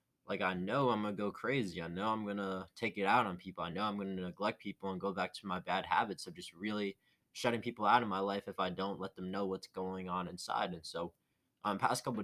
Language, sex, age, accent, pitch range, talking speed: English, male, 20-39, American, 100-120 Hz, 280 wpm